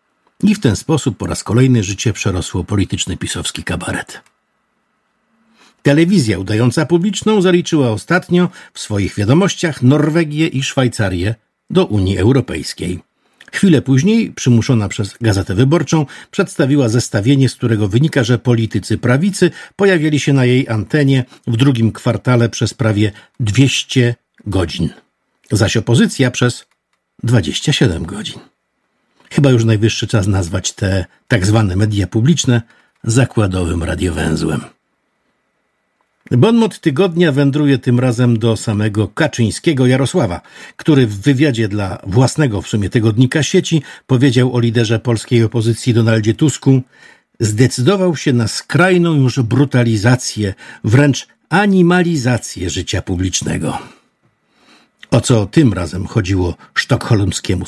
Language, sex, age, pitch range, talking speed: Polish, male, 50-69, 105-150 Hz, 115 wpm